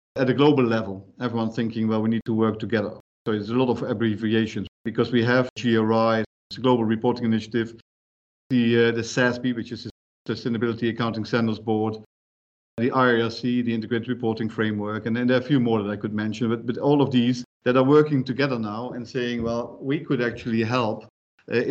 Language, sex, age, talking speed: English, male, 50-69, 200 wpm